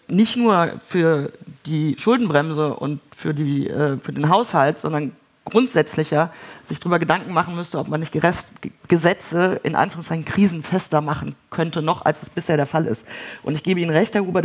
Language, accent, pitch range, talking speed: German, German, 155-180 Hz, 165 wpm